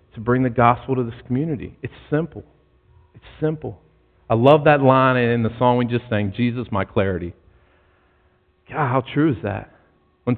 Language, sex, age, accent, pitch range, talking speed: English, male, 40-59, American, 100-135 Hz, 175 wpm